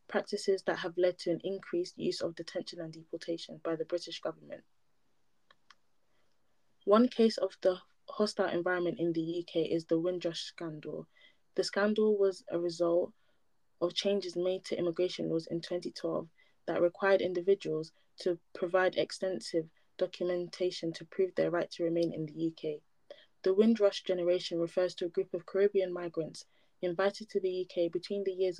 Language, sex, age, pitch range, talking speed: English, female, 20-39, 170-185 Hz, 155 wpm